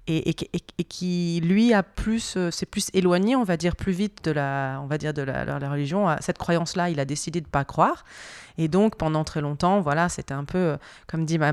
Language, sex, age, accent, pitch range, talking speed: French, female, 30-49, French, 155-205 Hz, 250 wpm